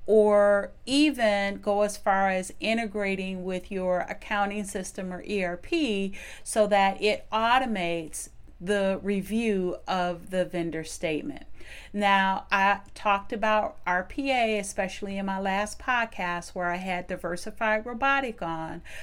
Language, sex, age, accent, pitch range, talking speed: English, female, 40-59, American, 175-215 Hz, 125 wpm